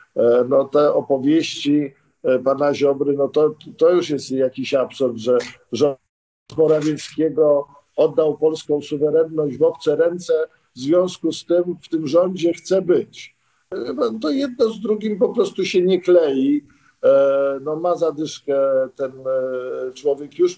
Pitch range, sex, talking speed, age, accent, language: 135-175 Hz, male, 130 wpm, 50-69, native, Polish